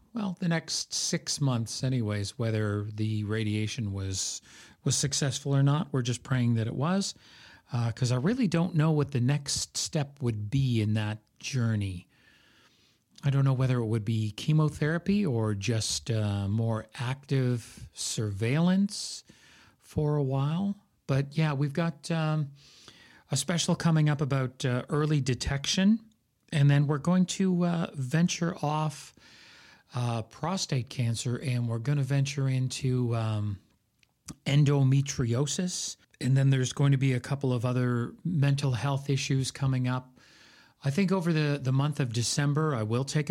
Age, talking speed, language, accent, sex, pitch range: 40-59, 150 wpm, English, American, male, 115-150 Hz